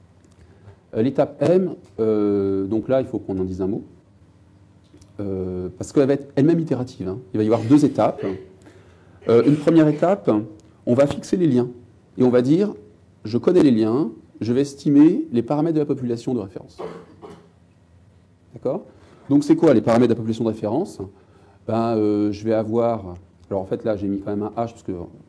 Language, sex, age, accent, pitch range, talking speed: English, male, 40-59, French, 95-125 Hz, 190 wpm